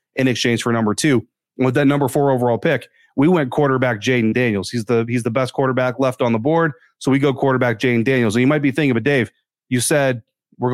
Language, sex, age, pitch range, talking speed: English, male, 30-49, 120-145 Hz, 235 wpm